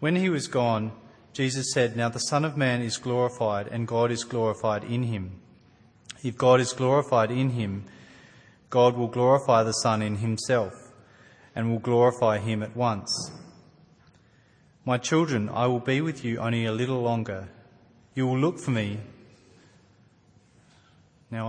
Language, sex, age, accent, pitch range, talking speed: English, male, 30-49, Australian, 110-130 Hz, 155 wpm